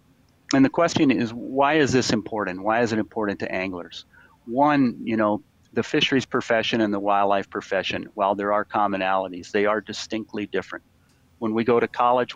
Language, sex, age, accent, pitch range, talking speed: English, male, 40-59, American, 100-110 Hz, 180 wpm